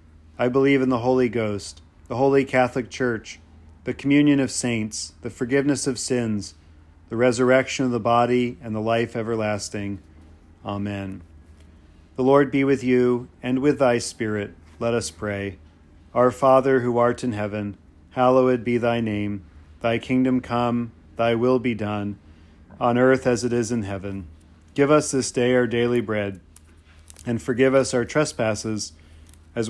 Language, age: English, 40-59